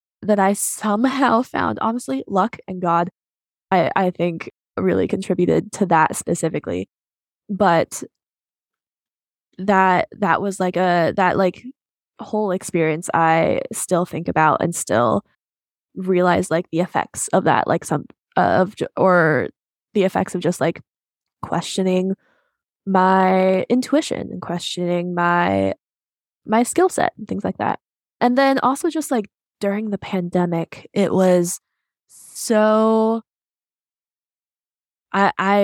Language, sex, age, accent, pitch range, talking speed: English, female, 10-29, American, 180-225 Hz, 125 wpm